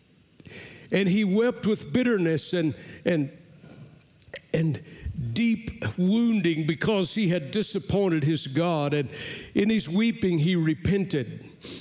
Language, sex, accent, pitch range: English, male, American, 150-190 Hz